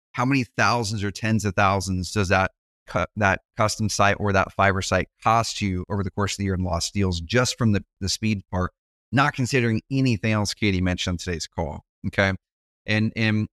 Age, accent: 30-49, American